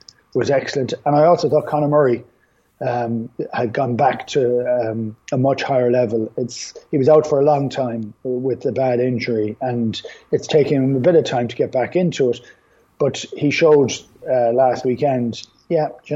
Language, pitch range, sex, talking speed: English, 120-150 Hz, male, 190 wpm